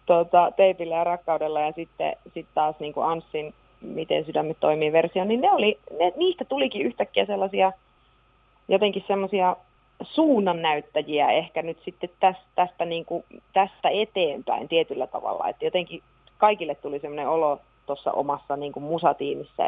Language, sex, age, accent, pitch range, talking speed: Finnish, female, 30-49, native, 155-220 Hz, 135 wpm